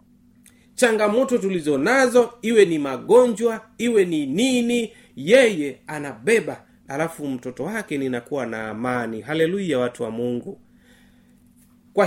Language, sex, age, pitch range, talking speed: Swahili, male, 30-49, 155-235 Hz, 105 wpm